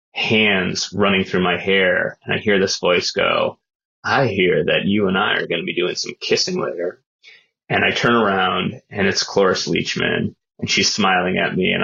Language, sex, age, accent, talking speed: English, male, 20-39, American, 200 wpm